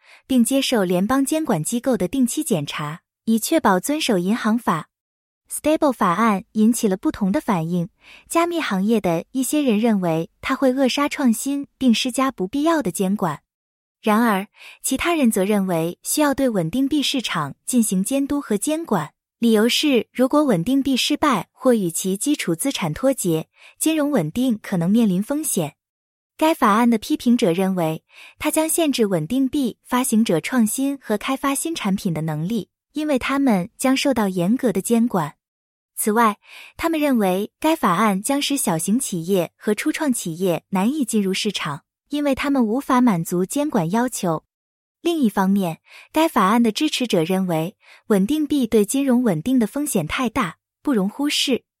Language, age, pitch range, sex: English, 20-39, 190-275 Hz, female